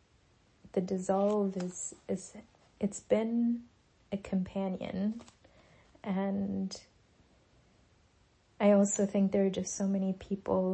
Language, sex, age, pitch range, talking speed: English, female, 30-49, 185-200 Hz, 100 wpm